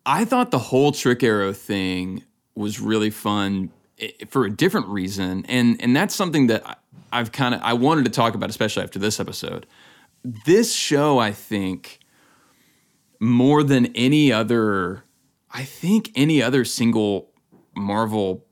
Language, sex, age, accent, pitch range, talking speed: English, male, 20-39, American, 105-130 Hz, 145 wpm